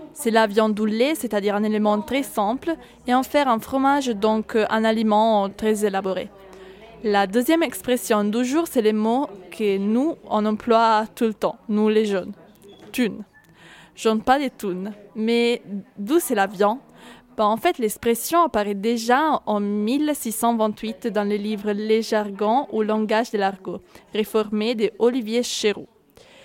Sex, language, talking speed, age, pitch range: female, French, 160 wpm, 20-39, 210-245 Hz